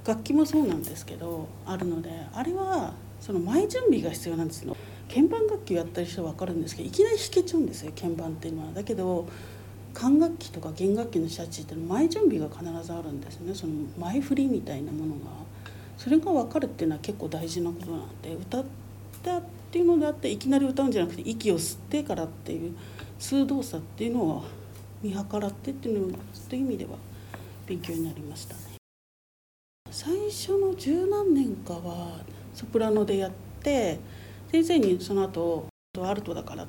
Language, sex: Japanese, female